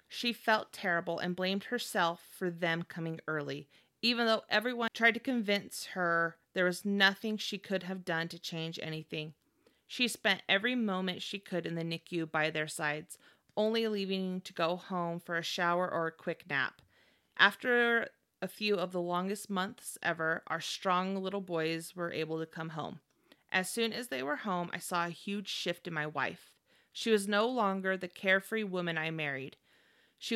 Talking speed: 180 wpm